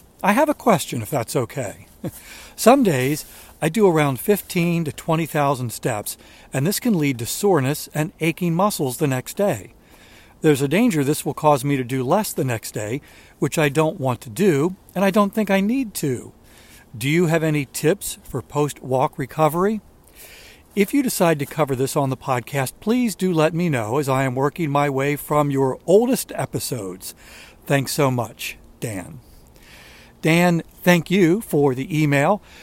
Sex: male